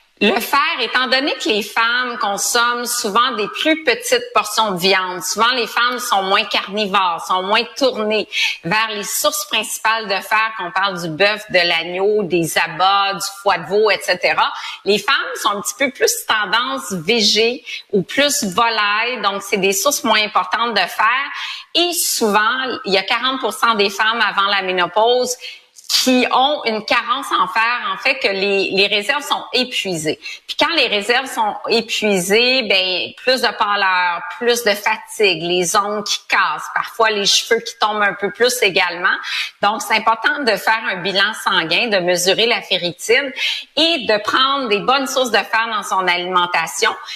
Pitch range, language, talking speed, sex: 195-250 Hz, French, 175 wpm, female